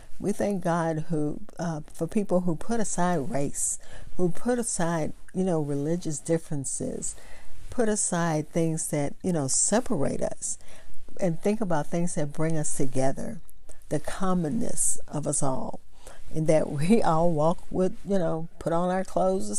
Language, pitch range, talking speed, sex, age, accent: English, 155-200 Hz, 160 wpm, female, 50-69, American